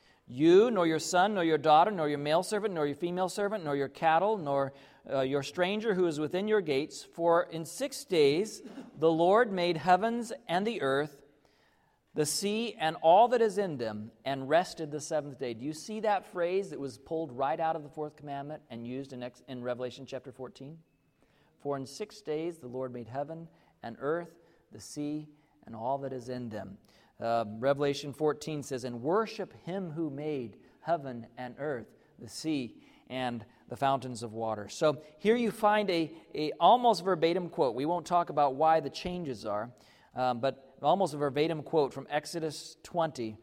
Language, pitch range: English, 130-170 Hz